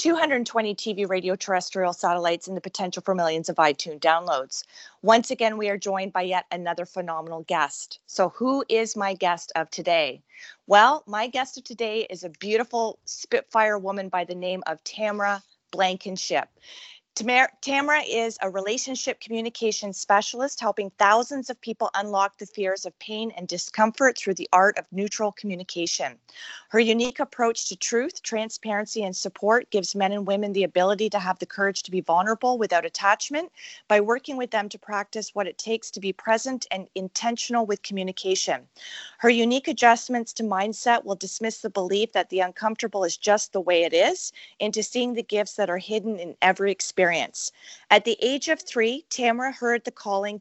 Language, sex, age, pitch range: English, female, 30-49, 185-230 Hz